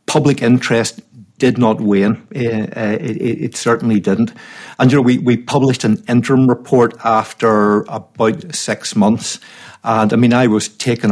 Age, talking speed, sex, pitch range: 60-79, 155 wpm, male, 110-125 Hz